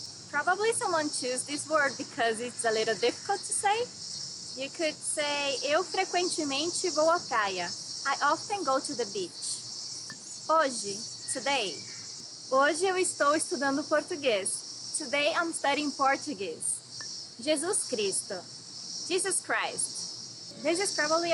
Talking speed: 125 wpm